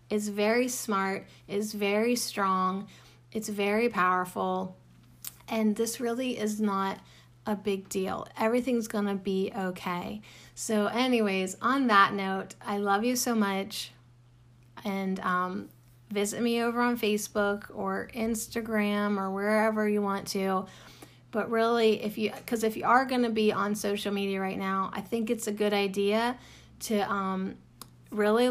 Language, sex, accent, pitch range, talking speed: English, female, American, 195-230 Hz, 145 wpm